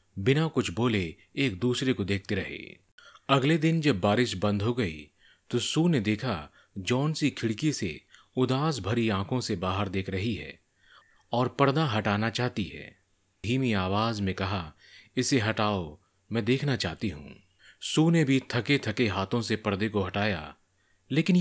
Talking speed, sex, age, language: 155 wpm, male, 30-49, Hindi